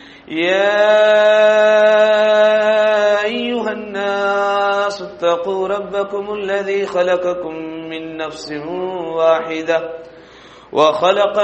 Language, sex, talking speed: English, male, 60 wpm